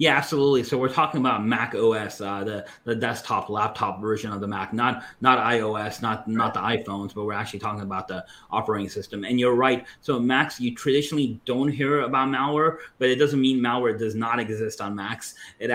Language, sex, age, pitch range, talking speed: English, male, 30-49, 110-130 Hz, 205 wpm